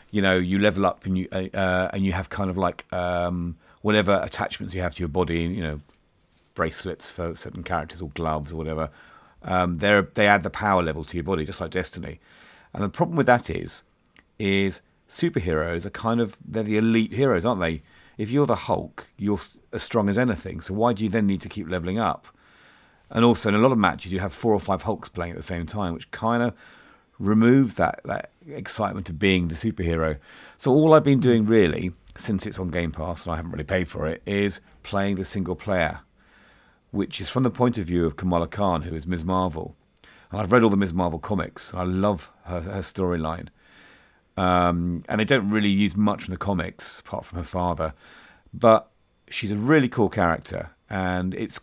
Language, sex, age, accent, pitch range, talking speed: English, male, 40-59, British, 85-105 Hz, 210 wpm